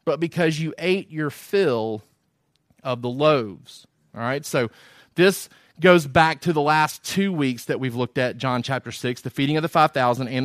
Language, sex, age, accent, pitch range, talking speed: English, male, 30-49, American, 145-185 Hz, 190 wpm